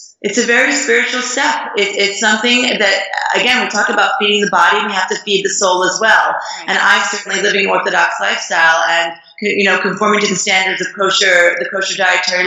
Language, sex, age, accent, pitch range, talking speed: English, female, 30-49, American, 170-215 Hz, 205 wpm